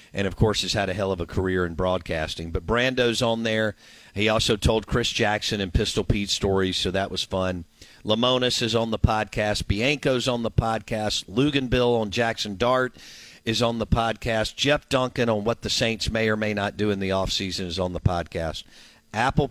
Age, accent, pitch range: 50-69, American, 95-115 Hz